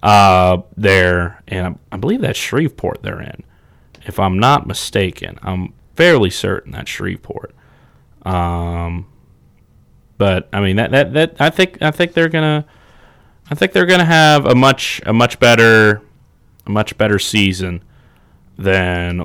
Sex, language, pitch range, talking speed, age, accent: male, English, 95-125 Hz, 145 wpm, 30-49, American